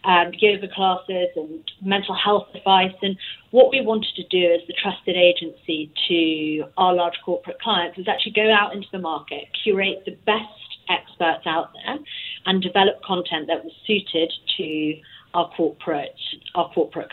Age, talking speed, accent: 30-49, 165 wpm, British